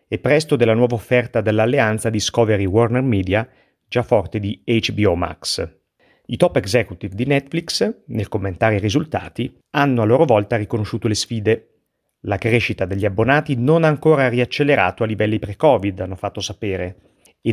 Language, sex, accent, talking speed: Italian, male, native, 160 wpm